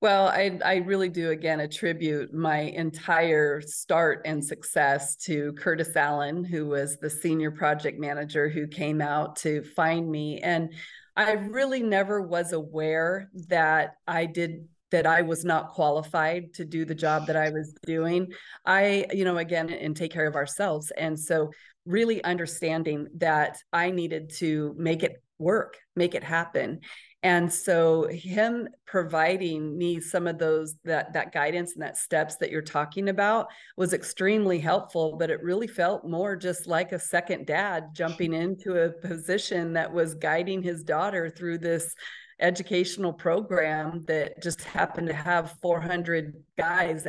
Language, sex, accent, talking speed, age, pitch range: English, female, American, 155 wpm, 30-49, 155-180 Hz